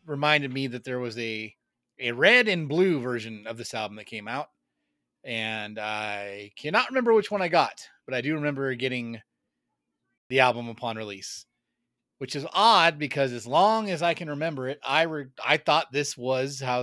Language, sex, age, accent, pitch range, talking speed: English, male, 30-49, American, 120-160 Hz, 185 wpm